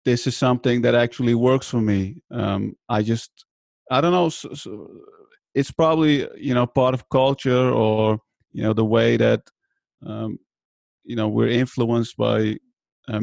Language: English